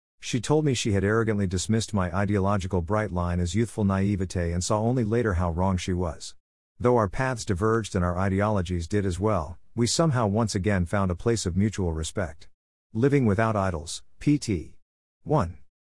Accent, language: American, English